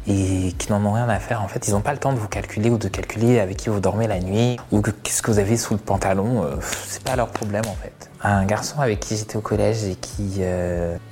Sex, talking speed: male, 280 wpm